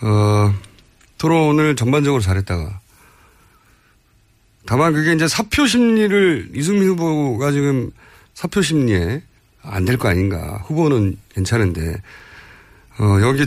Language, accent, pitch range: Korean, native, 100-155 Hz